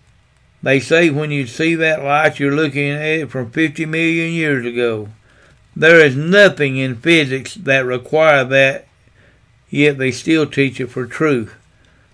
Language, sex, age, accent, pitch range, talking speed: English, male, 60-79, American, 125-150 Hz, 155 wpm